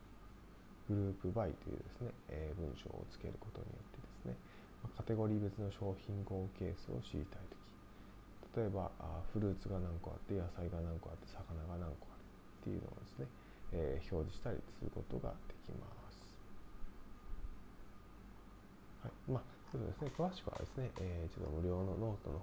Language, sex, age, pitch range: Japanese, male, 20-39, 90-100 Hz